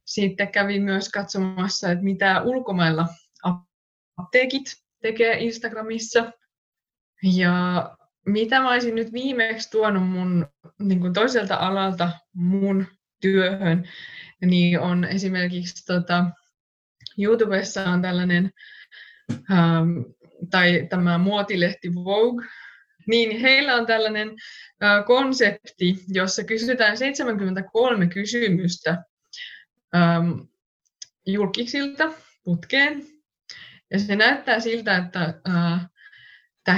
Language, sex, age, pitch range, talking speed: Finnish, female, 20-39, 175-225 Hz, 90 wpm